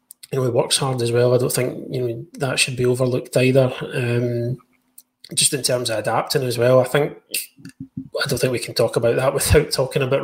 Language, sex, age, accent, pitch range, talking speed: English, male, 20-39, British, 120-140 Hz, 225 wpm